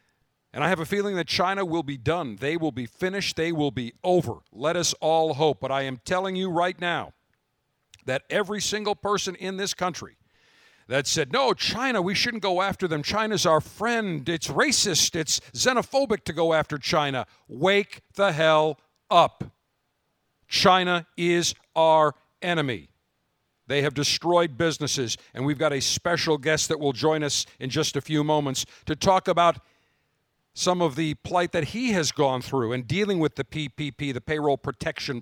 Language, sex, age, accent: English, male, 50-69, American